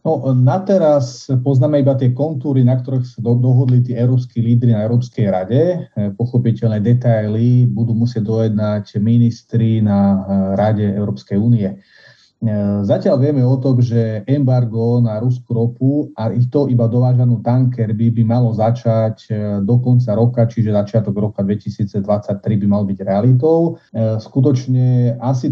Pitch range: 110-125 Hz